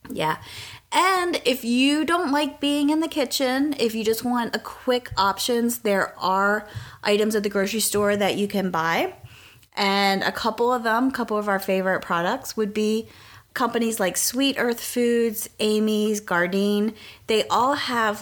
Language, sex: English, female